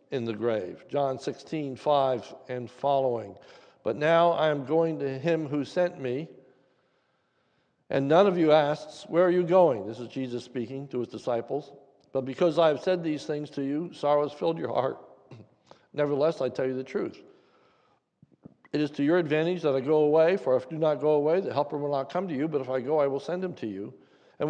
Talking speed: 215 wpm